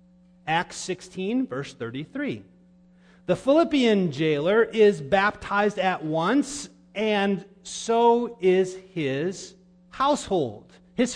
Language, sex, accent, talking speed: English, male, American, 90 wpm